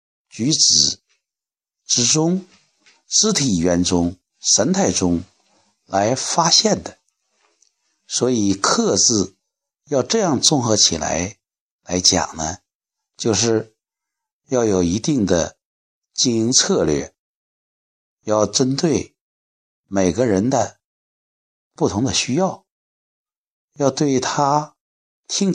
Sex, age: male, 60-79